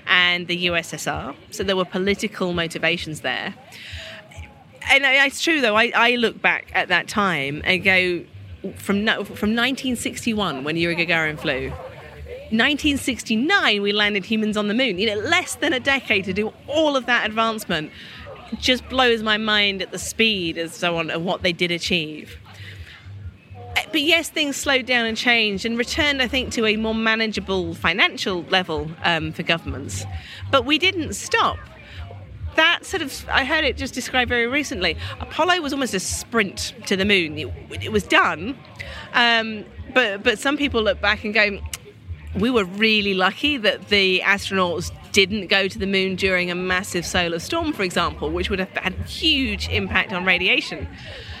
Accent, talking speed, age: British, 170 wpm, 40-59